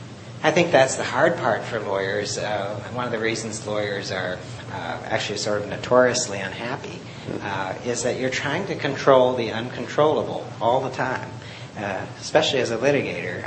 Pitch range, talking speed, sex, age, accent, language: 110-130 Hz, 170 wpm, male, 50-69, American, English